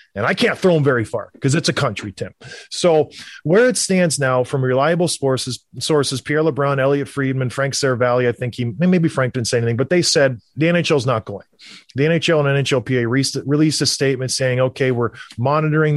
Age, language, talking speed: 30-49, English, 205 wpm